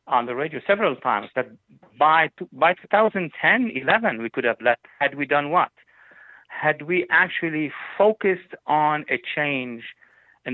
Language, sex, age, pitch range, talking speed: English, male, 50-69, 135-185 Hz, 155 wpm